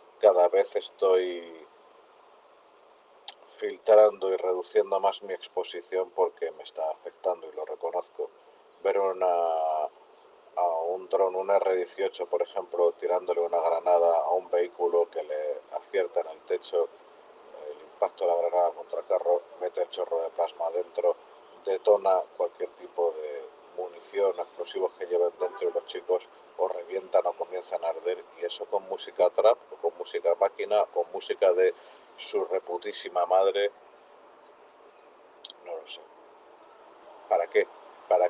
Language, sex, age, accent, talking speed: Spanish, male, 40-59, Spanish, 140 wpm